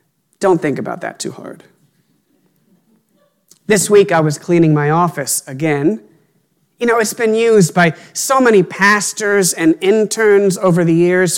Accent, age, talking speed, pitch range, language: American, 40-59, 150 wpm, 175-240 Hz, English